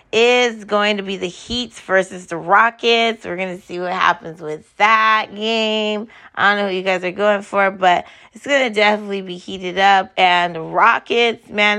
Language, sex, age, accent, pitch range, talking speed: English, female, 20-39, American, 185-230 Hz, 190 wpm